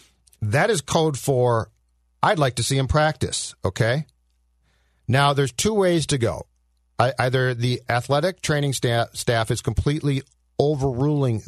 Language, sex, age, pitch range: English, male, 50-69, 110-145 Hz